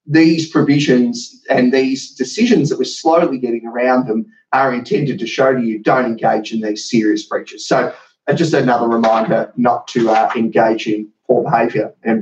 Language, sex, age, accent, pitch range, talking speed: English, male, 30-49, Australian, 120-145 Hz, 170 wpm